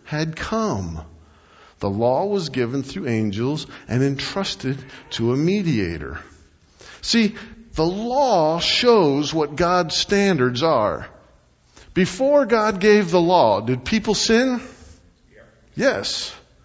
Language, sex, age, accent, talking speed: English, male, 50-69, American, 110 wpm